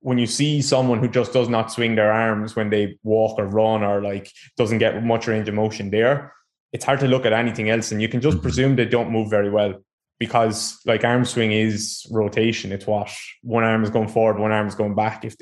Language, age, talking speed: English, 20-39, 235 wpm